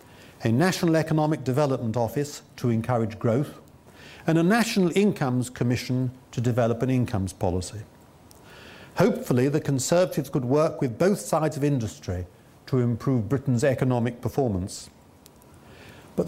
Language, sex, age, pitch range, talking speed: English, male, 50-69, 115-160 Hz, 125 wpm